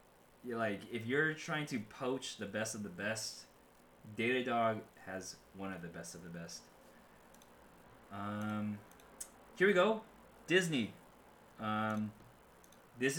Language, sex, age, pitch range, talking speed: English, male, 20-39, 100-120 Hz, 125 wpm